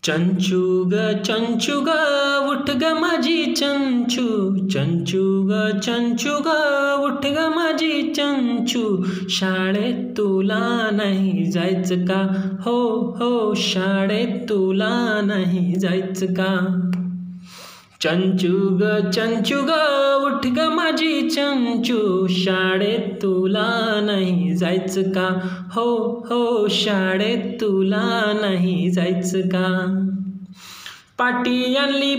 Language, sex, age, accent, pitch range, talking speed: Marathi, male, 20-39, native, 210-290 Hz, 85 wpm